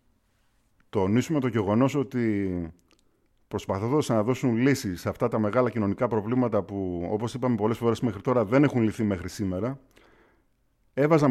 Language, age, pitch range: Greek, 50-69, 100-130 Hz